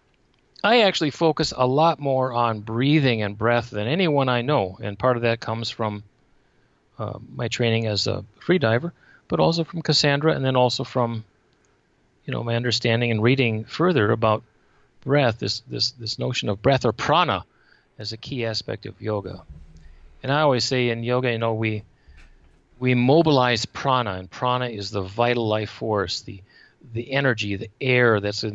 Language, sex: English, male